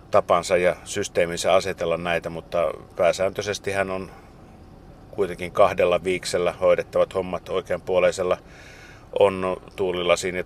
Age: 50-69